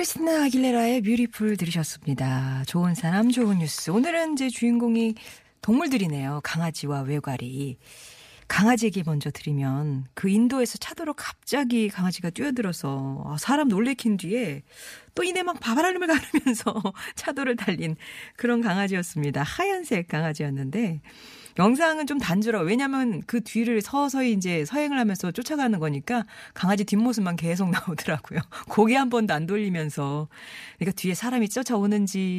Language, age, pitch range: Korean, 40-59, 155-235 Hz